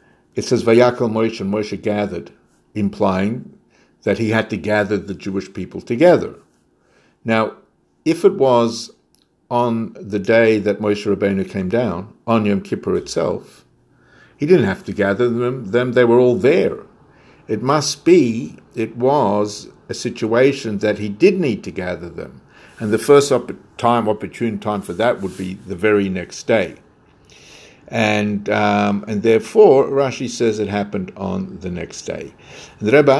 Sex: male